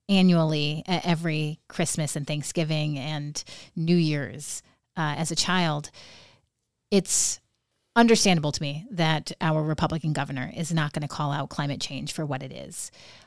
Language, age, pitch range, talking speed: English, 30-49, 150-170 Hz, 145 wpm